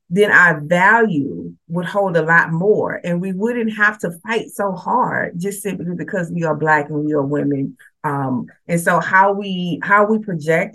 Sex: female